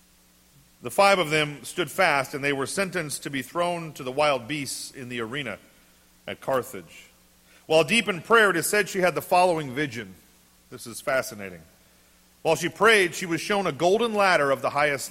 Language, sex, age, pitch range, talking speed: English, male, 40-59, 120-190 Hz, 195 wpm